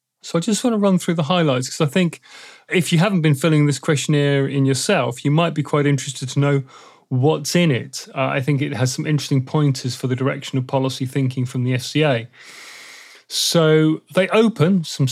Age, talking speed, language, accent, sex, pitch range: 30-49, 205 wpm, English, British, male, 130-155 Hz